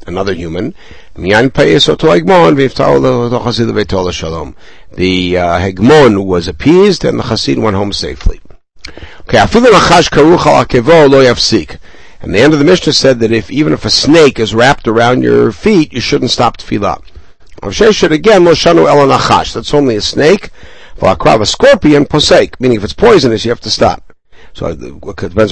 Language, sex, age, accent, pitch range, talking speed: English, male, 60-79, American, 100-140 Hz, 130 wpm